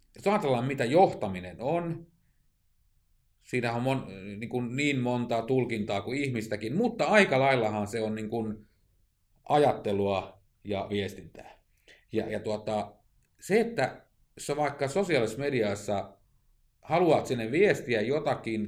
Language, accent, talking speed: Finnish, native, 110 wpm